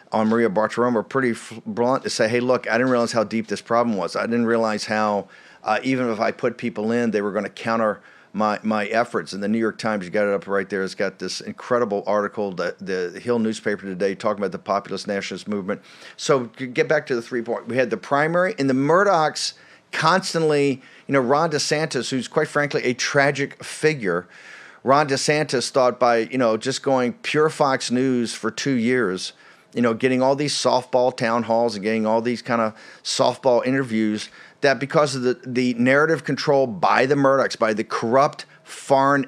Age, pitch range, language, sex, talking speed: 50-69, 110-140 Hz, English, male, 200 wpm